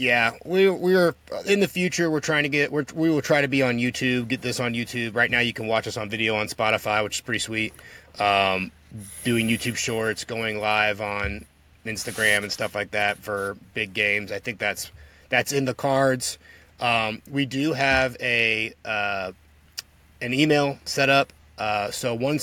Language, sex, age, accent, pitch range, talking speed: English, male, 30-49, American, 105-130 Hz, 195 wpm